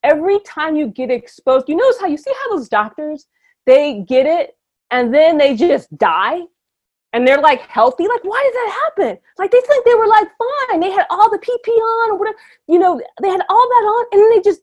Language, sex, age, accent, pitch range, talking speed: English, female, 30-49, American, 275-390 Hz, 230 wpm